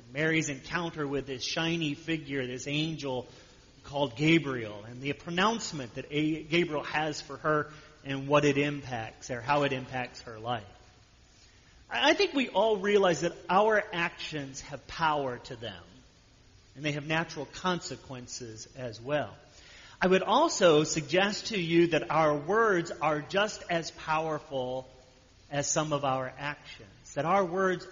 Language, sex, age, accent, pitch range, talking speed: English, male, 40-59, American, 125-170 Hz, 145 wpm